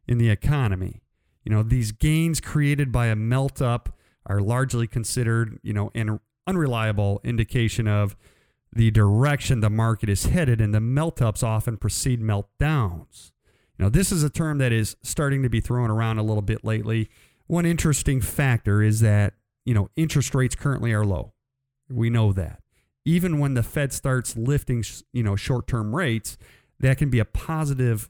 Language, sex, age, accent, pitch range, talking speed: English, male, 40-59, American, 105-130 Hz, 165 wpm